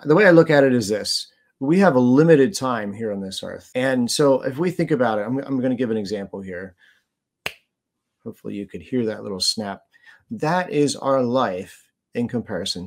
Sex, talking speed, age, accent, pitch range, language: male, 205 wpm, 30-49, American, 110-145 Hz, English